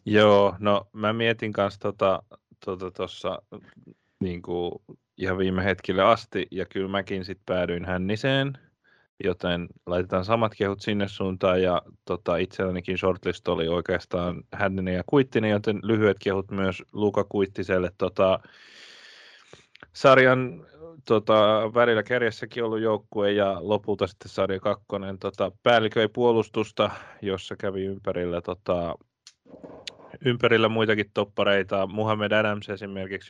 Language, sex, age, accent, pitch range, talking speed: Finnish, male, 20-39, native, 95-105 Hz, 120 wpm